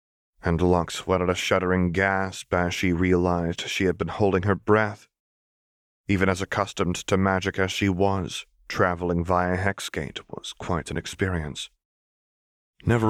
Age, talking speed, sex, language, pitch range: 30-49, 140 wpm, male, English, 85-95 Hz